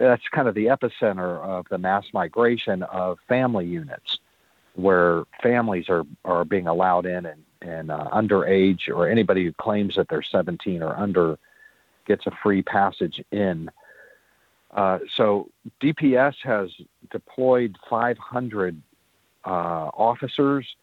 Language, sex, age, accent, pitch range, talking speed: English, male, 50-69, American, 90-115 Hz, 130 wpm